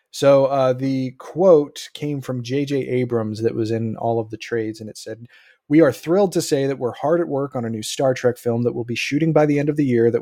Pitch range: 115-145 Hz